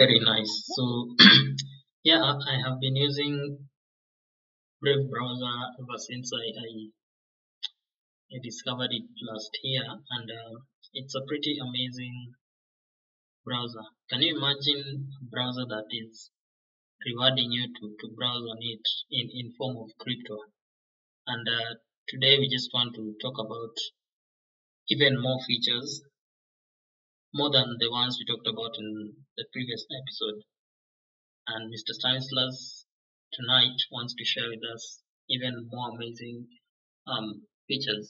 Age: 20-39